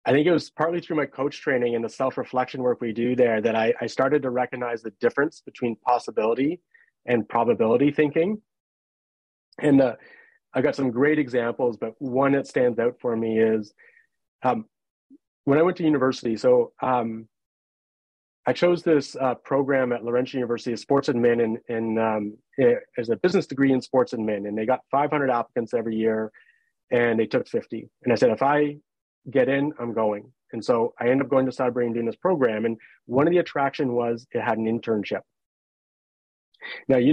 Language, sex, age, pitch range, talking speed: English, male, 30-49, 115-145 Hz, 190 wpm